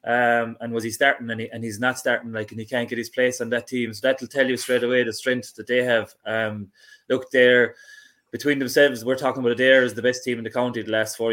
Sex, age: male, 20-39